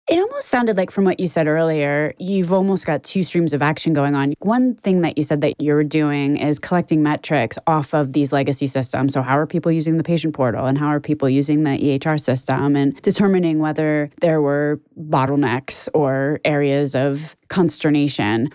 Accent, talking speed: American, 195 wpm